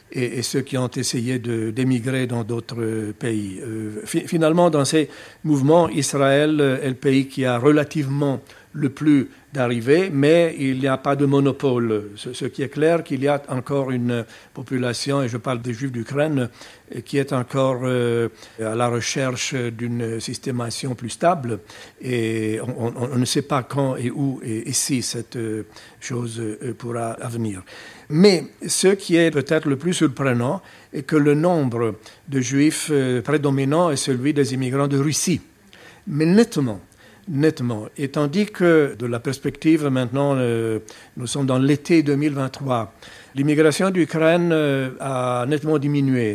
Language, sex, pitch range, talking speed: French, male, 120-150 Hz, 145 wpm